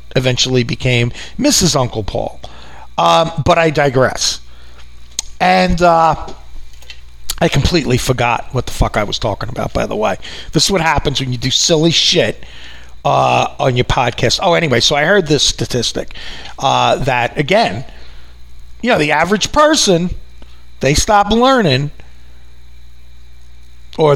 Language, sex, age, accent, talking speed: English, male, 40-59, American, 140 wpm